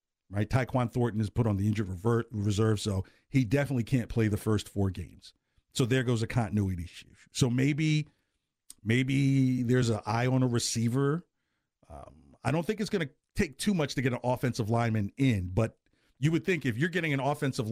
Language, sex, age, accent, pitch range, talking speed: English, male, 50-69, American, 115-150 Hz, 195 wpm